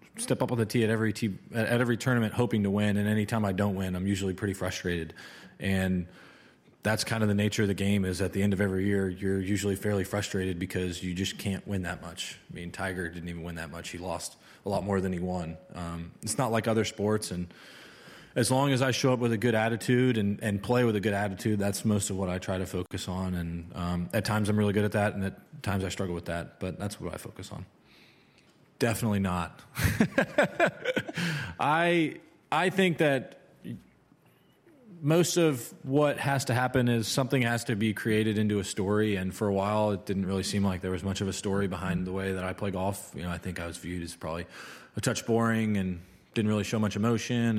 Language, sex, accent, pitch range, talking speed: English, male, American, 90-115 Hz, 230 wpm